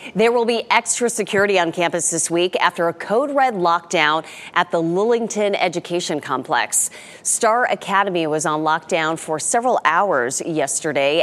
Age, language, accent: 30-49, English, American